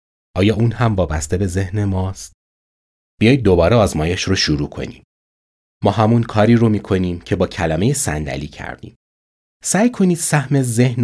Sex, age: male, 30-49